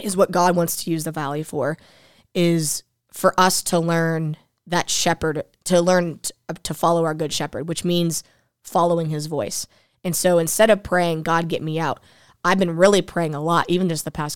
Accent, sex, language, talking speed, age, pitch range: American, female, English, 195 wpm, 20-39, 160-185 Hz